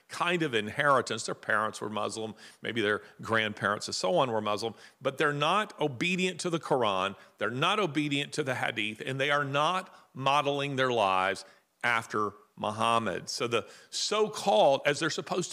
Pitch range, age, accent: 120-185 Hz, 50-69, American